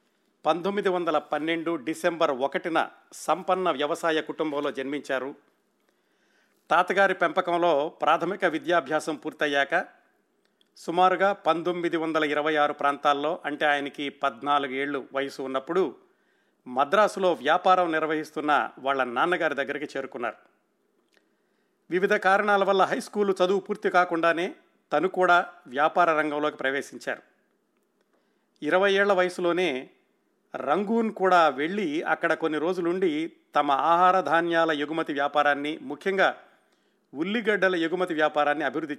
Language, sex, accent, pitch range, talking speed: Telugu, male, native, 150-185 Hz, 95 wpm